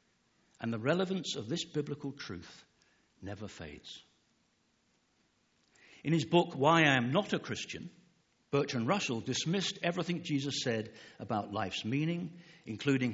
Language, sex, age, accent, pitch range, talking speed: English, male, 60-79, British, 110-160 Hz, 130 wpm